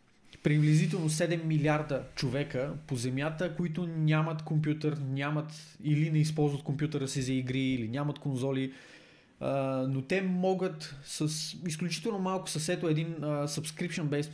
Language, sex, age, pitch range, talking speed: Bulgarian, male, 20-39, 135-160 Hz, 120 wpm